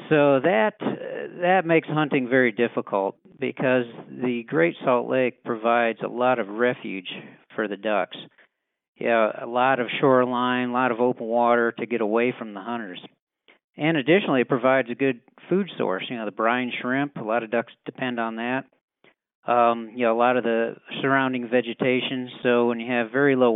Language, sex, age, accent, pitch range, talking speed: English, male, 40-59, American, 120-150 Hz, 185 wpm